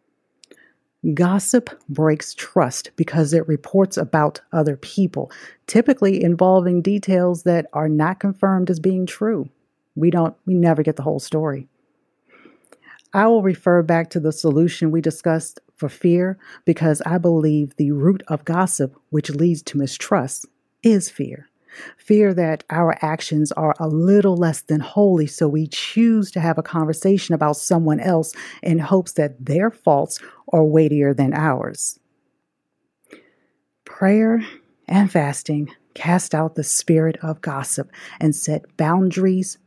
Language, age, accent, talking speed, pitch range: English, 40-59, American, 140 wpm, 155-195 Hz